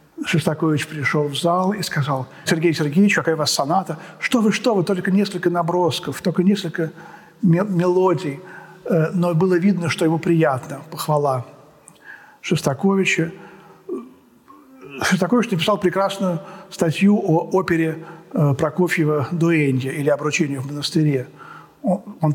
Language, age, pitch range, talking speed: Russian, 50-69, 150-190 Hz, 115 wpm